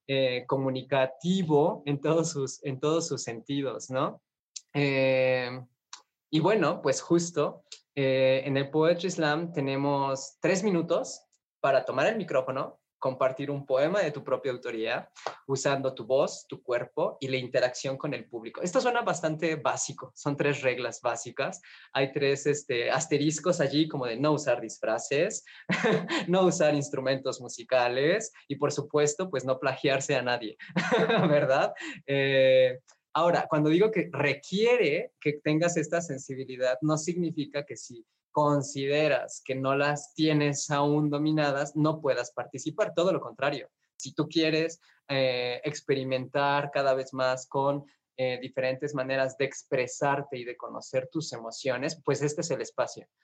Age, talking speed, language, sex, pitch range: 20-39, 140 wpm, Spanish, male, 130-155 Hz